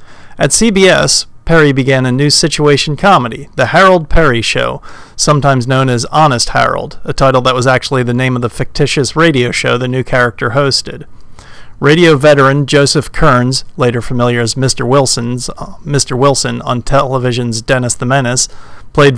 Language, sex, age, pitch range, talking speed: English, male, 40-59, 125-150 Hz, 160 wpm